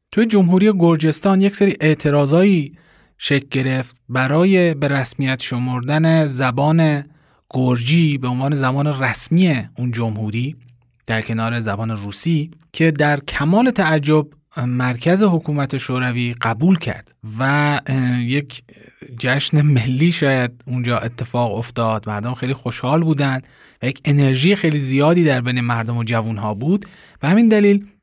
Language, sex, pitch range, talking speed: Persian, male, 125-165 Hz, 130 wpm